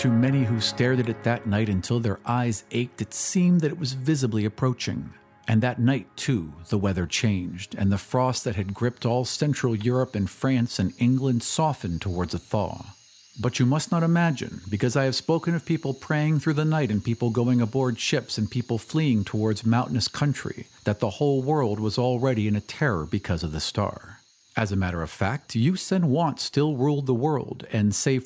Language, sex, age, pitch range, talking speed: English, male, 50-69, 105-140 Hz, 205 wpm